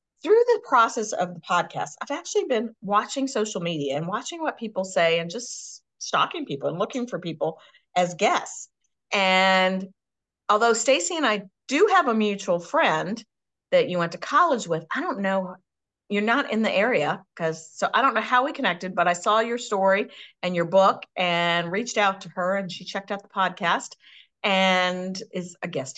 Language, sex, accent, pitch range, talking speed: English, female, American, 170-220 Hz, 190 wpm